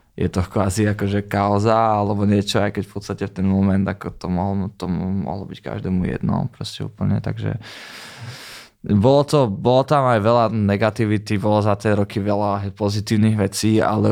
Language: Czech